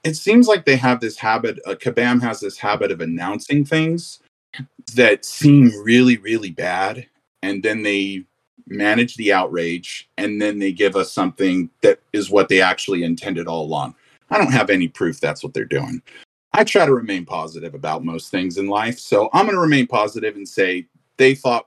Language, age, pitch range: English, 40-59, 100-135 Hz